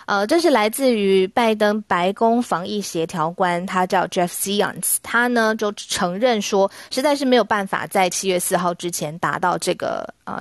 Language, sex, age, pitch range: Chinese, female, 20-39, 180-230 Hz